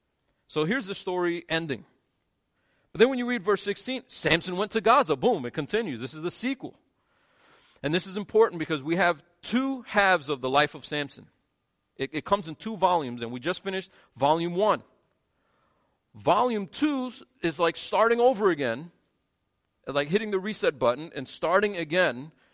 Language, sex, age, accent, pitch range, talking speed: English, male, 40-59, American, 130-180 Hz, 170 wpm